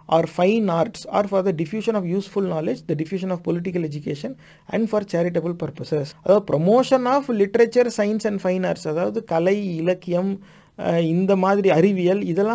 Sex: male